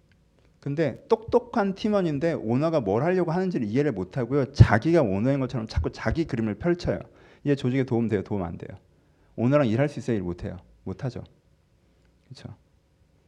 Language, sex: Korean, male